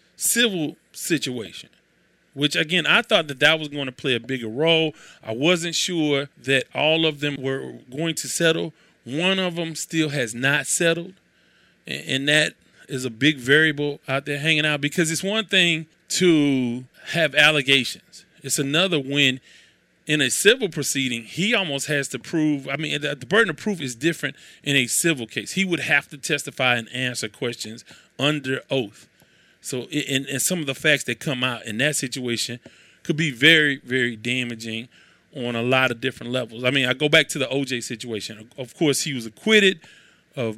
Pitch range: 130-165 Hz